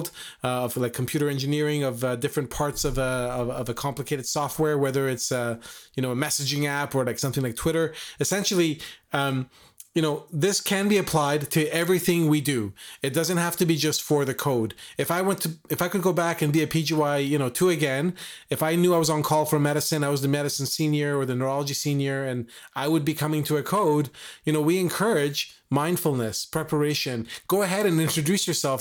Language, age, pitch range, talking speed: English, 30-49, 130-155 Hz, 215 wpm